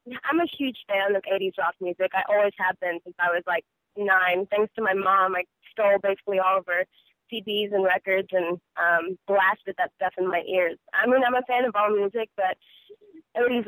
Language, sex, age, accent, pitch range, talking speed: English, female, 20-39, American, 190-230 Hz, 210 wpm